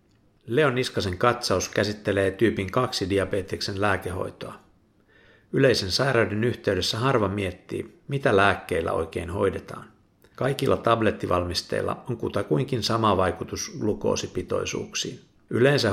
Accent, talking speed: native, 95 wpm